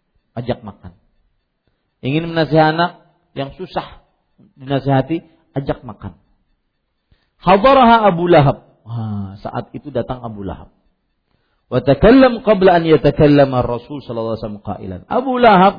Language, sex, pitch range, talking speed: Malay, male, 115-170 Hz, 110 wpm